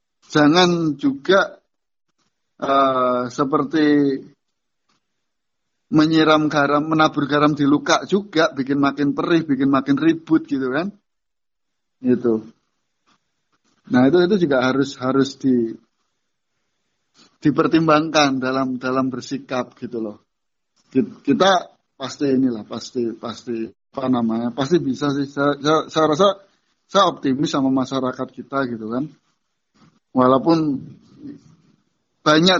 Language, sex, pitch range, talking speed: Indonesian, male, 130-155 Hz, 105 wpm